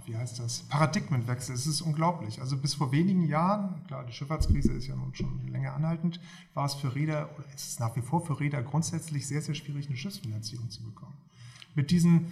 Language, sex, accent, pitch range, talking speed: German, male, German, 135-160 Hz, 205 wpm